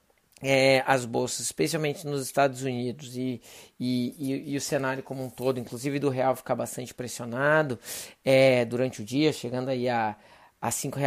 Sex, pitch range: male, 125-150 Hz